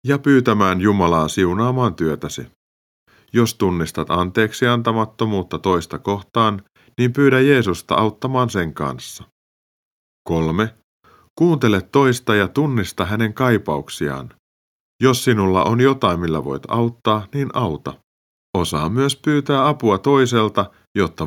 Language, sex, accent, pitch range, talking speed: Finnish, male, native, 85-125 Hz, 110 wpm